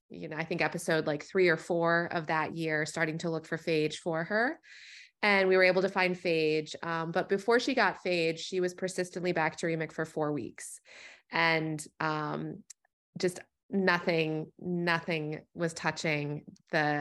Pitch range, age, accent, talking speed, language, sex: 155-180 Hz, 20-39, American, 165 wpm, English, female